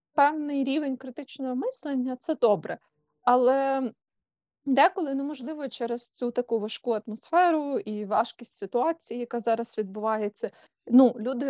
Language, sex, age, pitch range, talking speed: Ukrainian, female, 20-39, 200-245 Hz, 115 wpm